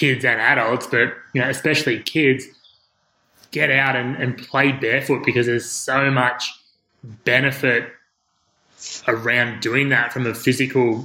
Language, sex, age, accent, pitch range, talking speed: English, male, 20-39, Australian, 115-130 Hz, 135 wpm